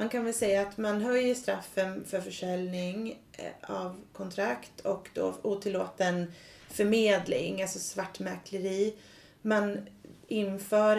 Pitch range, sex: 175-200 Hz, female